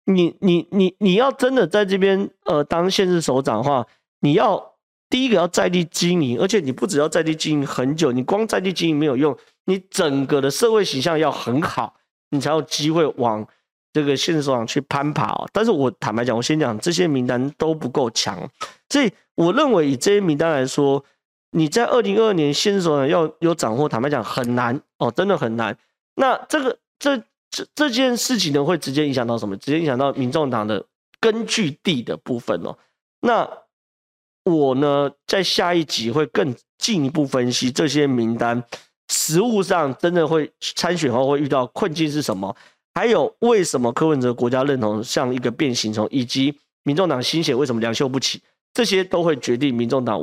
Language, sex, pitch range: Chinese, male, 125-170 Hz